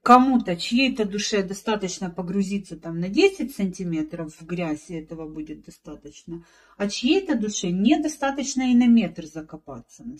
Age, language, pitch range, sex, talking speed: 40-59, Russian, 190-250 Hz, female, 140 wpm